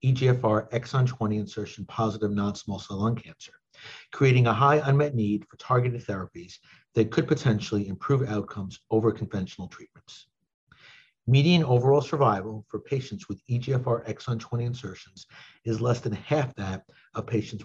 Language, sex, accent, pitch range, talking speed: English, male, American, 105-130 Hz, 145 wpm